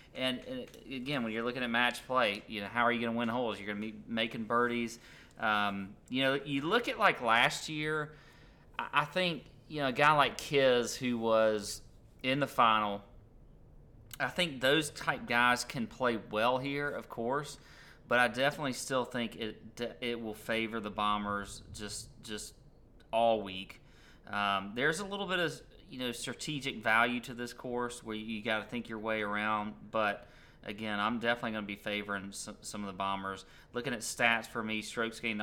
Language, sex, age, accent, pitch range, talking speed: English, male, 30-49, American, 110-130 Hz, 190 wpm